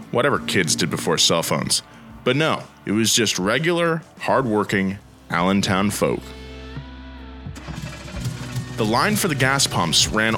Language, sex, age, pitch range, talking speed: English, male, 20-39, 95-140 Hz, 125 wpm